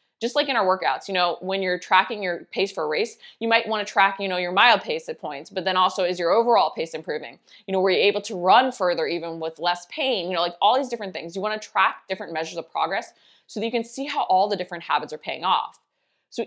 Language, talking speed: English, 275 wpm